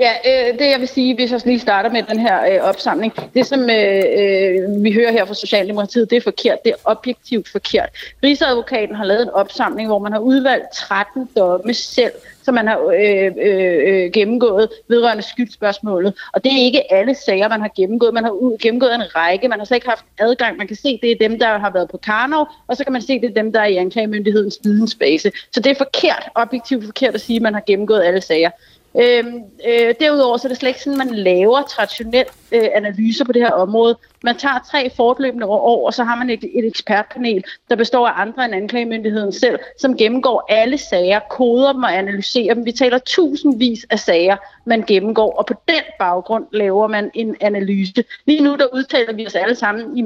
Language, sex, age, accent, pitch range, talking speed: Danish, female, 30-49, native, 210-255 Hz, 215 wpm